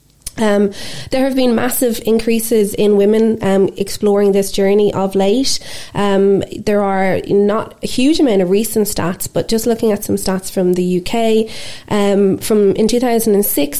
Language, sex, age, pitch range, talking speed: English, female, 20-39, 180-220 Hz, 160 wpm